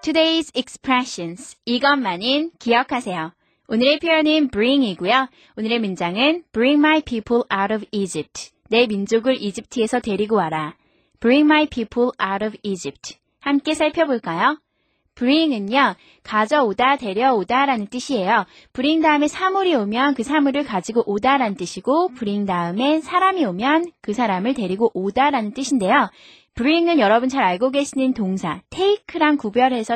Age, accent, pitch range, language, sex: 20-39, native, 205-290 Hz, Korean, female